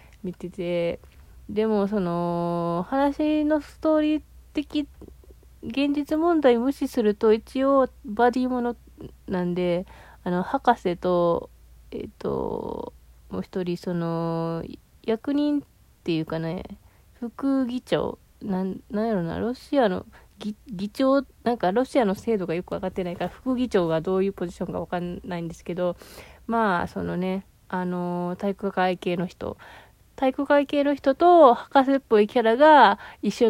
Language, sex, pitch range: Japanese, female, 185-260 Hz